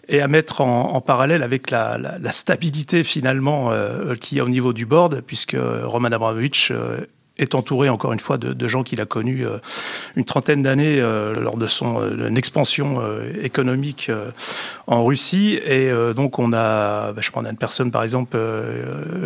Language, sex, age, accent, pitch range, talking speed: French, male, 30-49, French, 115-140 Hz, 195 wpm